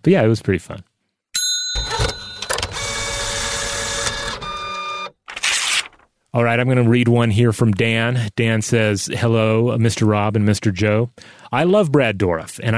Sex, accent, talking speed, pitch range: male, American, 135 wpm, 105-120 Hz